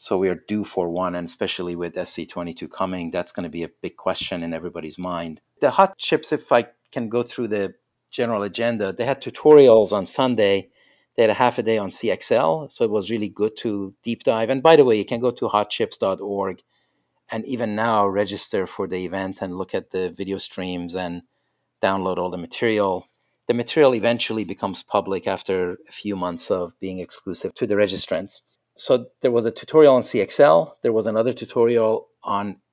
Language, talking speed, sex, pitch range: English, 195 wpm, male, 95-115 Hz